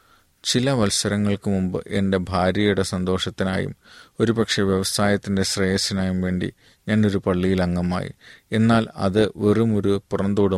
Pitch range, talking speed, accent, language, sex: 95-105 Hz, 95 wpm, native, Malayalam, male